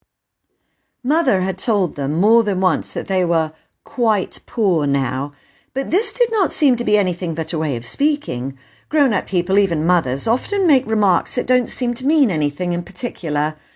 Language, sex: English, female